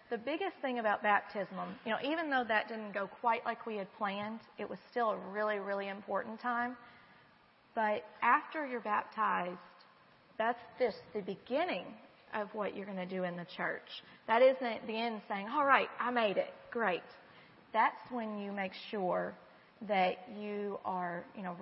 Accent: American